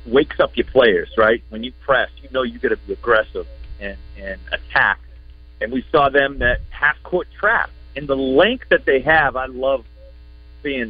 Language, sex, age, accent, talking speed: English, male, 40-59, American, 195 wpm